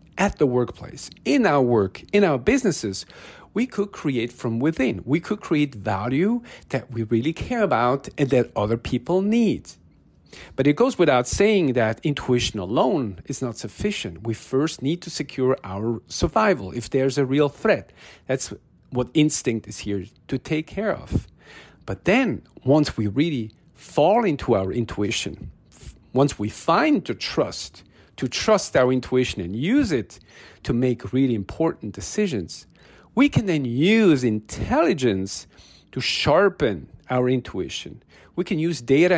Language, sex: English, male